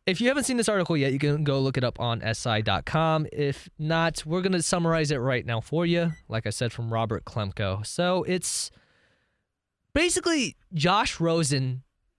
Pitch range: 120-160 Hz